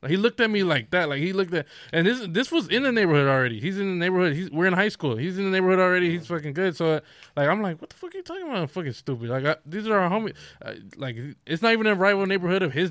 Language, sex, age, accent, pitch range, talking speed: English, male, 20-39, American, 125-165 Hz, 300 wpm